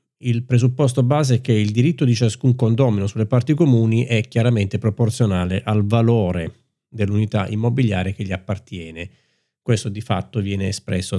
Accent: native